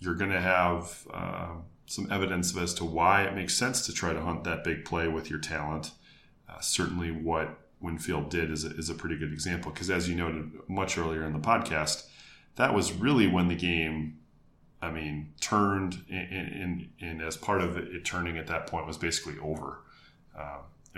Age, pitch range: 30-49, 80-95 Hz